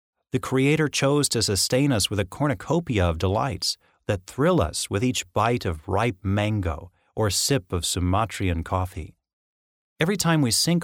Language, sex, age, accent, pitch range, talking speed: English, male, 40-59, American, 95-130 Hz, 160 wpm